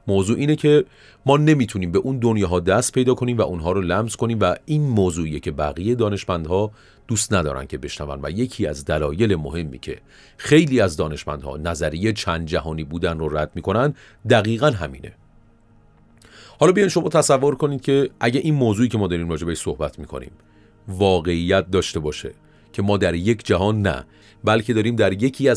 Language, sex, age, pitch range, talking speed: Persian, male, 40-59, 90-120 Hz, 170 wpm